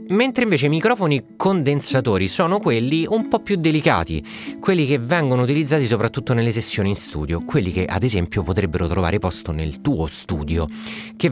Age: 30-49